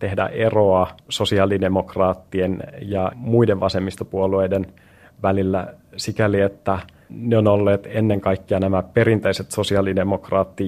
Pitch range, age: 95-105 Hz, 30-49